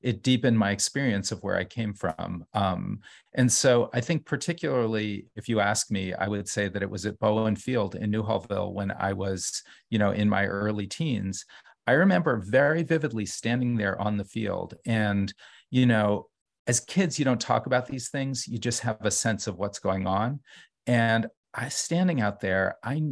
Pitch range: 105-130 Hz